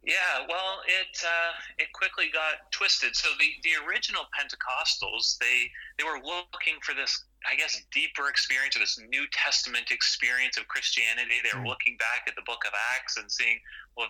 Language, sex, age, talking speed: English, male, 30-49, 175 wpm